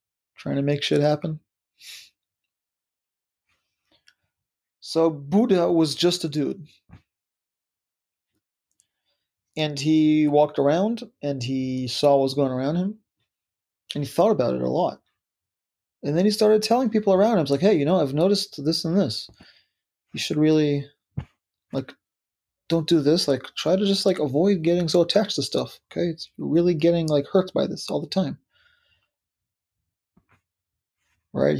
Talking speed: 150 wpm